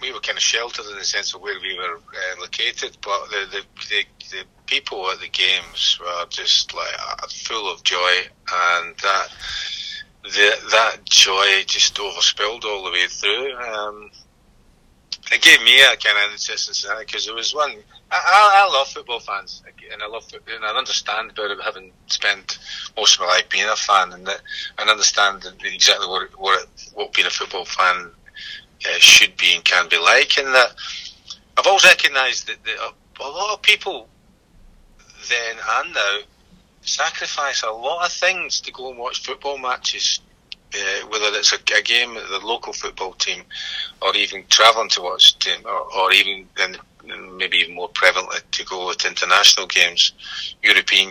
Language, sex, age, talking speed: English, male, 30-49, 180 wpm